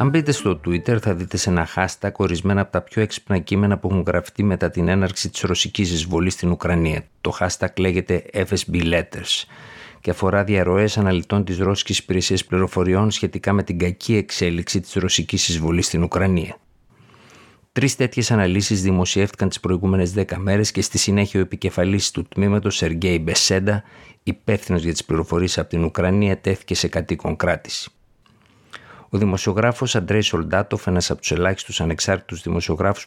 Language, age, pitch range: Greek, 50-69, 85-100 Hz